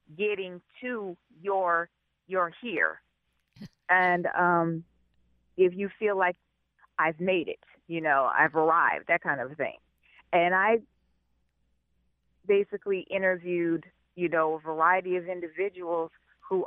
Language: English